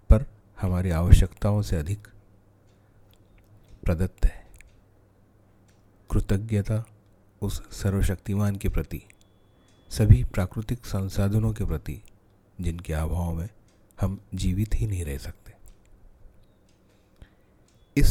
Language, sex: Hindi, male